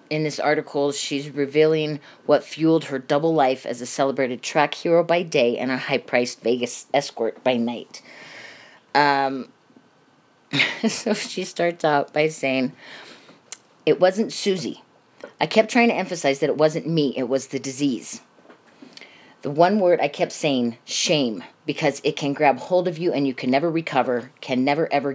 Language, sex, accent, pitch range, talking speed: English, female, American, 135-165 Hz, 165 wpm